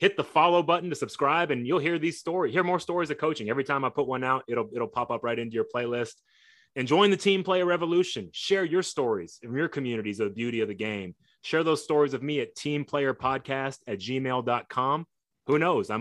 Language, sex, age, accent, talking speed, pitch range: English, male, 30-49, American, 225 wpm, 115-140 Hz